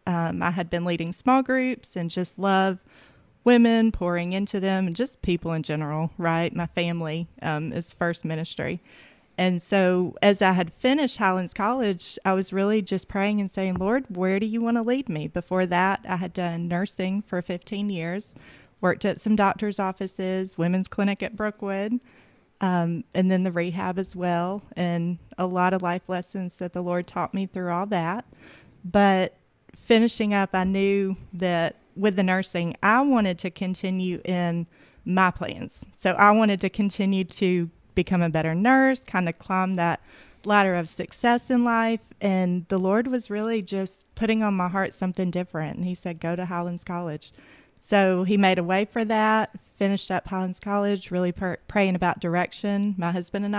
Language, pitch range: English, 175-205 Hz